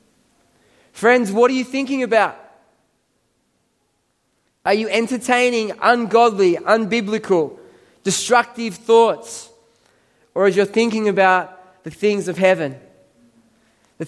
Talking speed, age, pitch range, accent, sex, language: 100 wpm, 20-39, 205-250 Hz, Australian, male, English